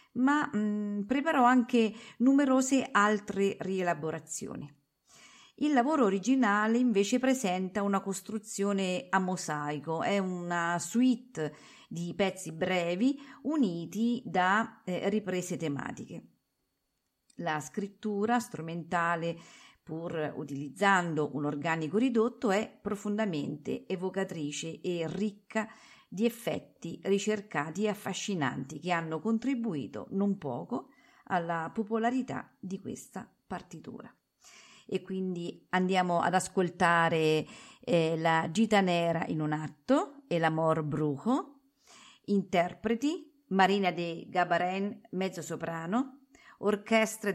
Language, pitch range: Italian, 170-230 Hz